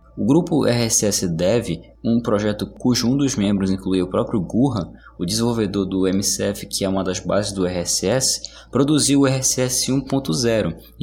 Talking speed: 160 wpm